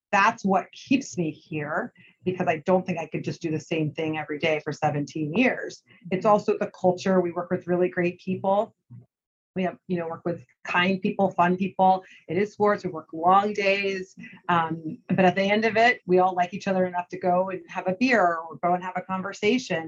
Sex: female